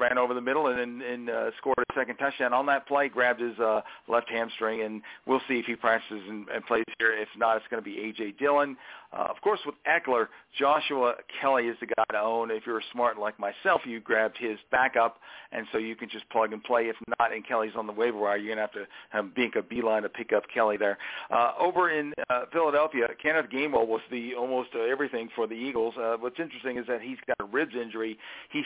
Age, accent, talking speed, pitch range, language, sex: 50-69, American, 240 wpm, 110-145 Hz, English, male